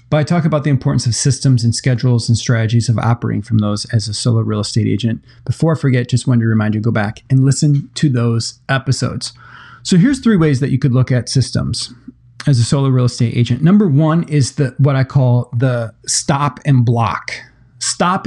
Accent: American